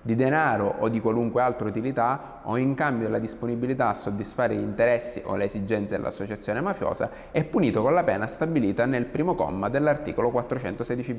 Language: Italian